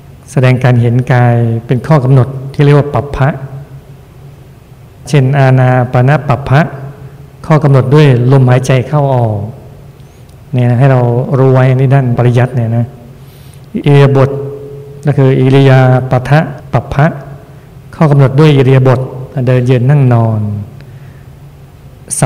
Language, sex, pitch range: Thai, male, 125-140 Hz